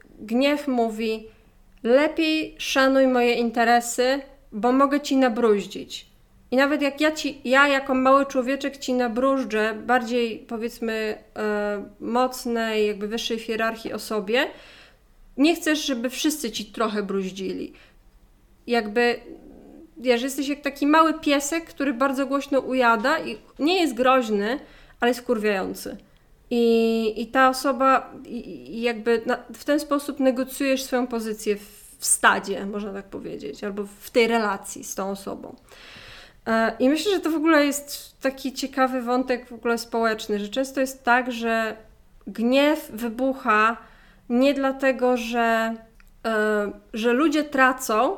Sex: female